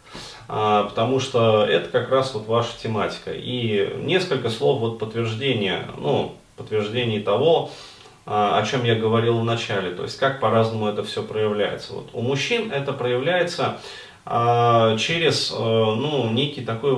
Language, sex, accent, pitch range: Russian, male, native, 110-135 Hz